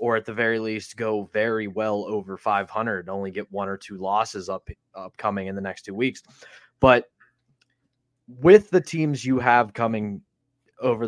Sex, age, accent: male, 20-39, American